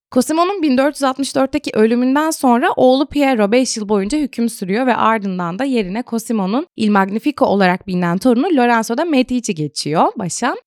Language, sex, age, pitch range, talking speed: Turkish, female, 20-39, 195-280 Hz, 145 wpm